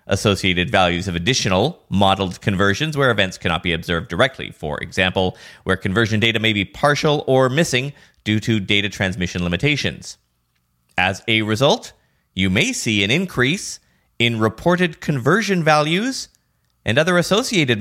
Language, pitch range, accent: English, 90-135 Hz, American